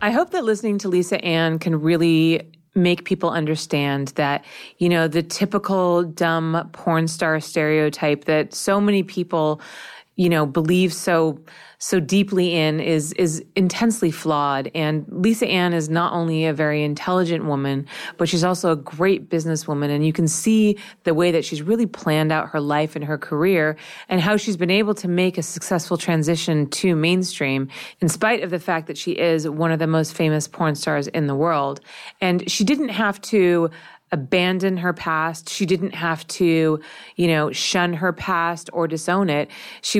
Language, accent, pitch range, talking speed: English, American, 155-180 Hz, 180 wpm